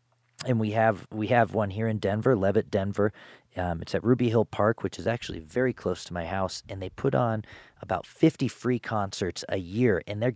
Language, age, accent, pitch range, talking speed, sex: English, 40-59, American, 95-125 Hz, 215 wpm, male